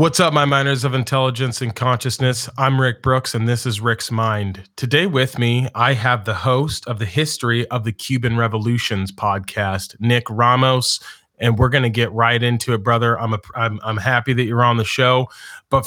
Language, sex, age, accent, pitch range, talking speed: English, male, 30-49, American, 115-140 Hz, 200 wpm